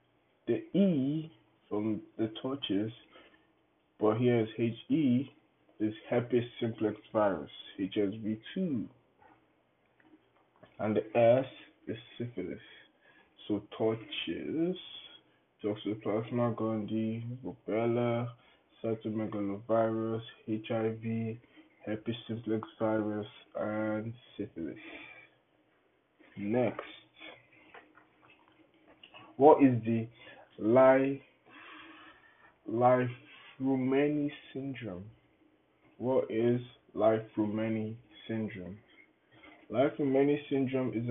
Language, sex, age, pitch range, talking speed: English, male, 20-39, 110-130 Hz, 75 wpm